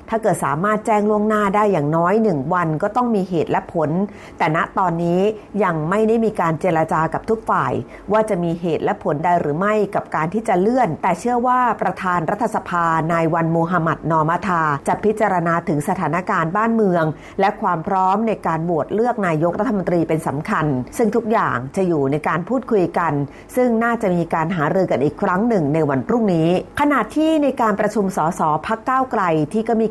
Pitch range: 165-220 Hz